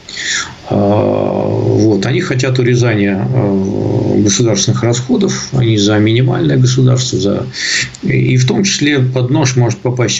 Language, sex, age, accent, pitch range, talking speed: Russian, male, 50-69, native, 105-125 Hz, 110 wpm